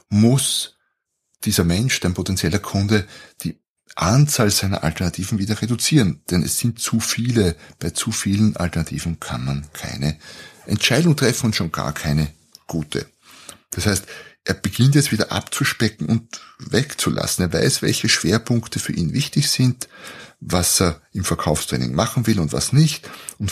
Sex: male